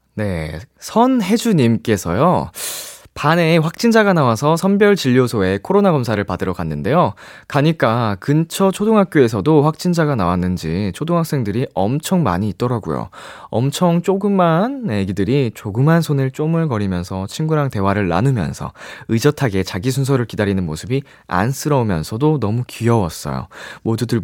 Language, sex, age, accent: Korean, male, 20-39, native